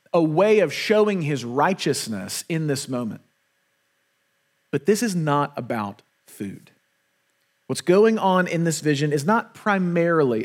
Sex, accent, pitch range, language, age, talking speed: male, American, 155-205 Hz, English, 40-59, 140 wpm